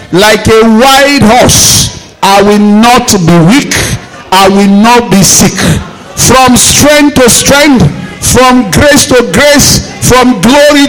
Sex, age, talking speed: male, 50-69, 130 wpm